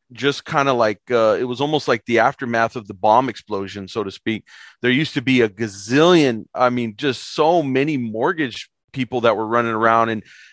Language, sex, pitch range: English, male, 115-130 Hz